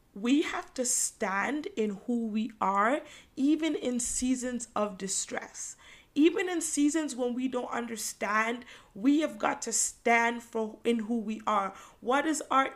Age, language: 20-39, English